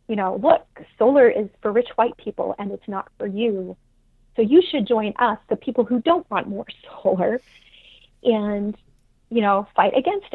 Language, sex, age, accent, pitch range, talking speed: English, female, 30-49, American, 190-230 Hz, 180 wpm